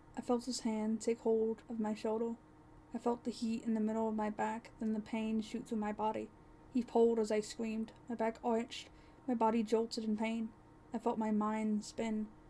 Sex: female